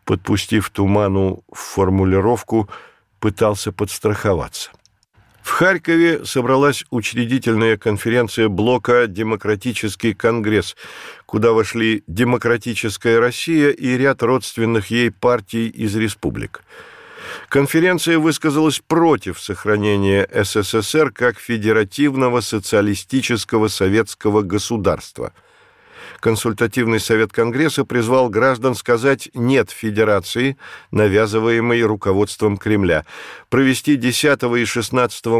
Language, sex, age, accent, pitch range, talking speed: Russian, male, 50-69, native, 105-130 Hz, 85 wpm